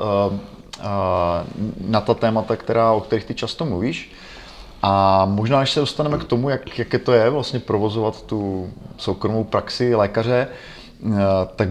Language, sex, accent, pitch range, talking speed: Czech, male, native, 95-115 Hz, 140 wpm